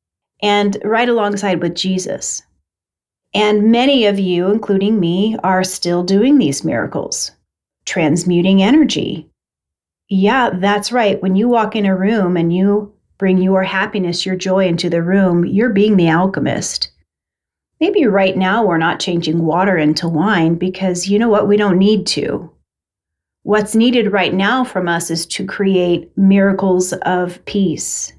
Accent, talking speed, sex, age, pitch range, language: American, 150 wpm, female, 30-49, 175-210 Hz, English